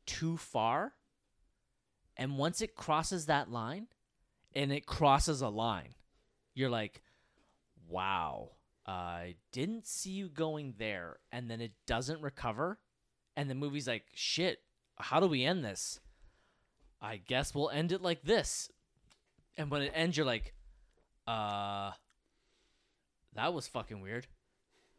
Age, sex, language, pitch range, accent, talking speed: 20-39, male, English, 110-145 Hz, American, 130 wpm